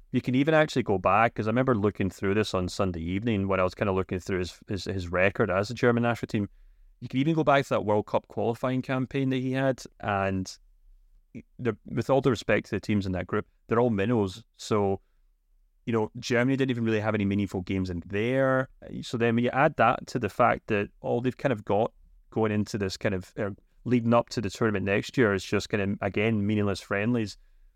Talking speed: 230 wpm